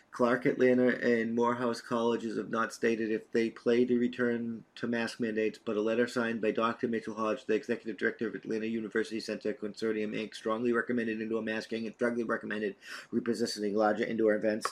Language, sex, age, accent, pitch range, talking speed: English, male, 40-59, American, 115-160 Hz, 180 wpm